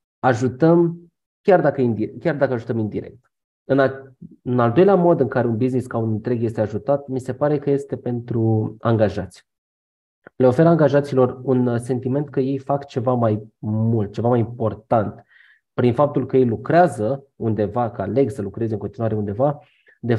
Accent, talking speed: native, 160 wpm